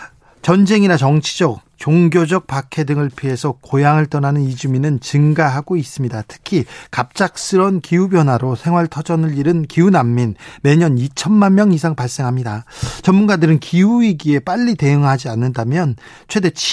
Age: 40-59